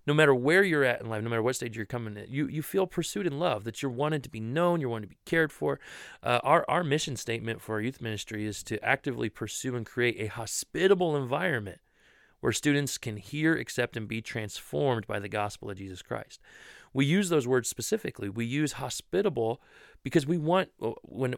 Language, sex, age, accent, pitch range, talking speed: English, male, 30-49, American, 110-150 Hz, 215 wpm